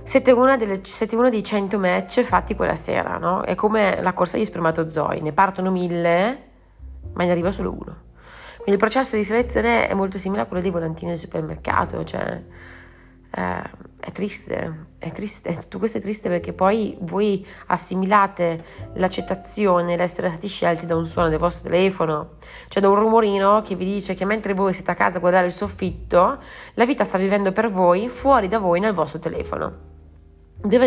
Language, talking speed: Italian, 180 wpm